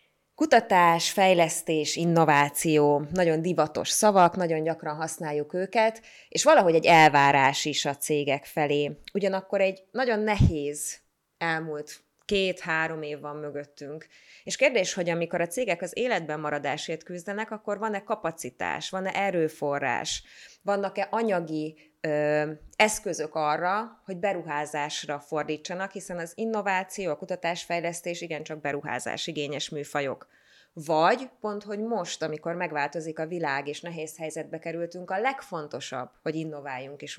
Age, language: 20-39, Hungarian